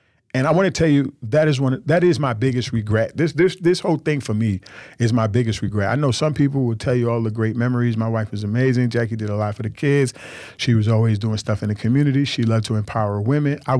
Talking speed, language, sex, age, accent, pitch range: 250 wpm, English, male, 40-59, American, 110-140 Hz